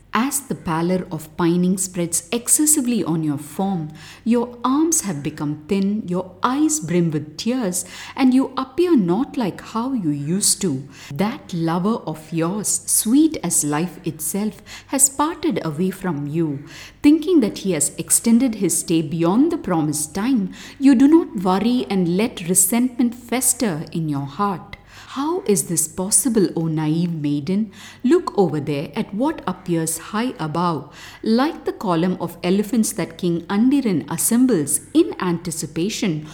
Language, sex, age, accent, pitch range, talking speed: English, female, 50-69, Indian, 165-245 Hz, 150 wpm